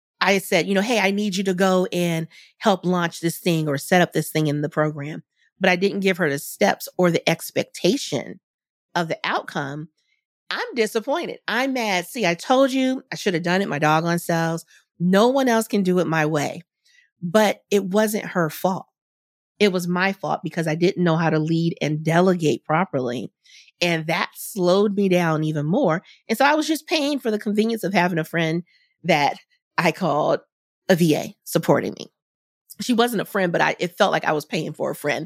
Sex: female